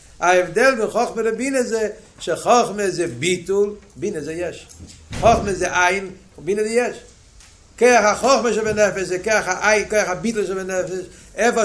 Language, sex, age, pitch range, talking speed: Hebrew, male, 50-69, 140-210 Hz, 140 wpm